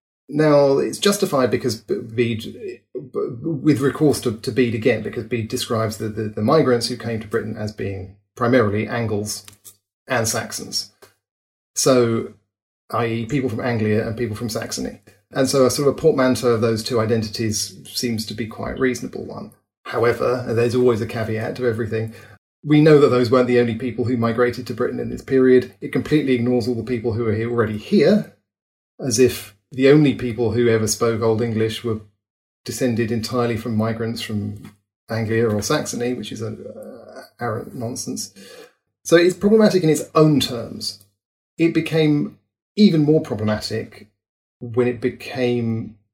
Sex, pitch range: male, 110-130 Hz